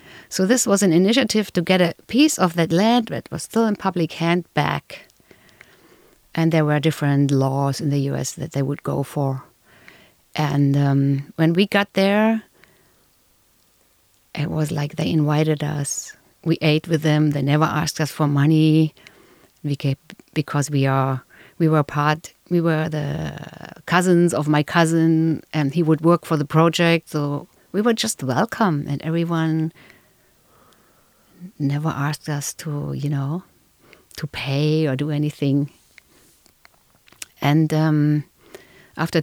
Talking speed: 150 wpm